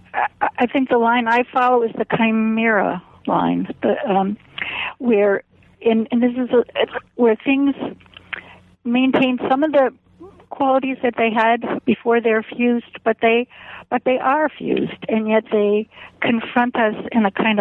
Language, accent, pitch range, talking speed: English, American, 200-245 Hz, 155 wpm